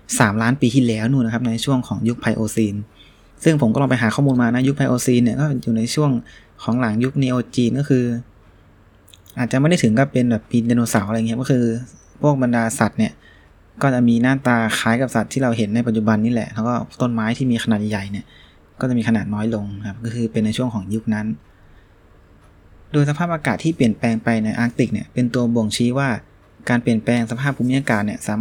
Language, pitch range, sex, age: Thai, 110-125 Hz, male, 20-39